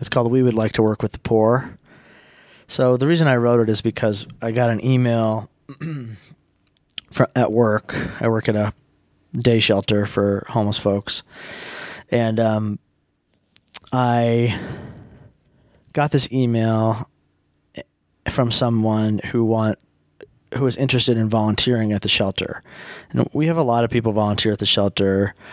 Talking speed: 145 wpm